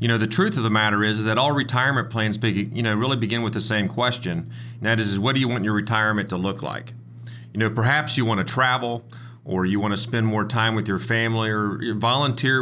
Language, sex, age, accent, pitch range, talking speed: English, male, 40-59, American, 110-125 Hz, 250 wpm